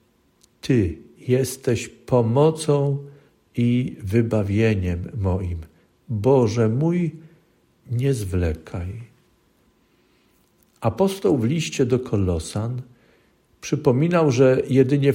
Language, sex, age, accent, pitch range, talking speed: Polish, male, 50-69, native, 105-140 Hz, 70 wpm